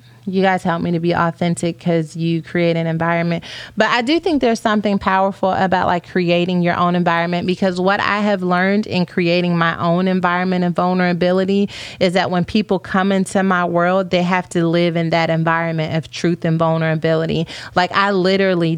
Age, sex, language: 30-49, female, English